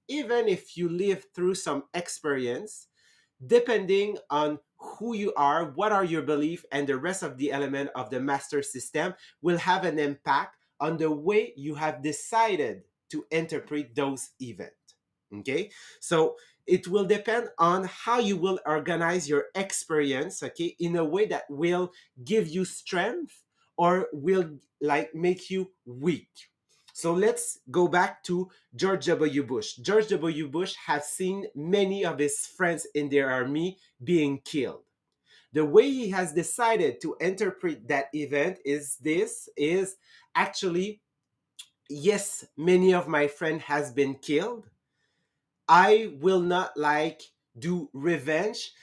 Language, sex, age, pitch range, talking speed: English, male, 30-49, 145-195 Hz, 145 wpm